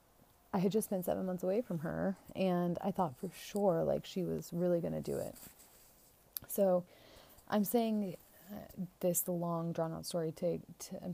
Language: English